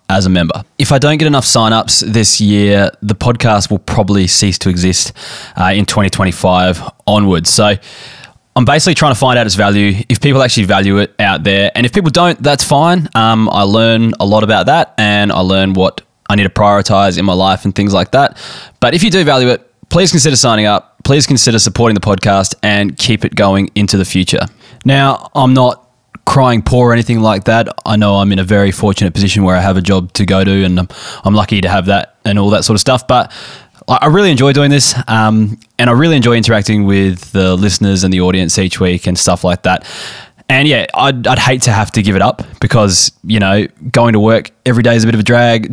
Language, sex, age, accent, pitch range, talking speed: English, male, 20-39, Australian, 95-120 Hz, 225 wpm